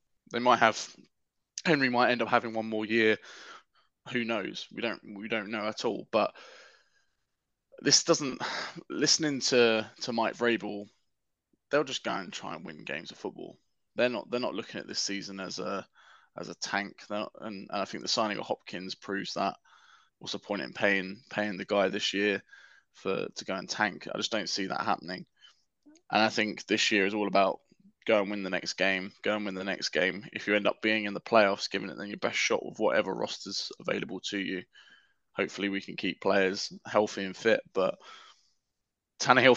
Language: English